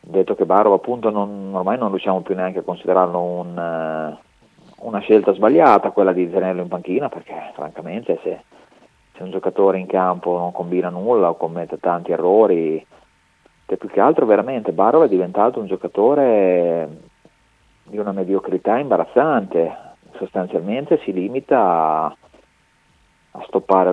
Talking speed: 135 wpm